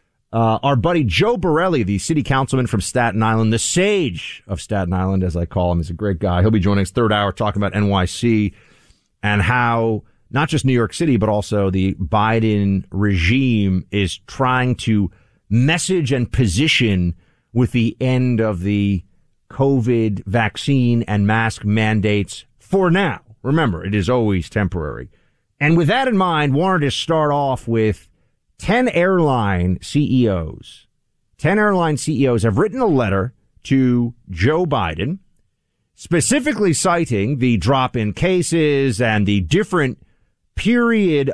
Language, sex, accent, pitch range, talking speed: English, male, American, 100-145 Hz, 145 wpm